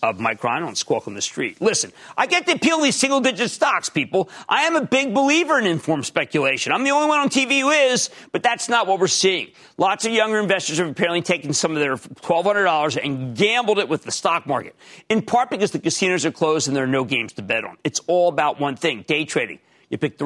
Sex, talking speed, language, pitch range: male, 245 wpm, English, 145-220 Hz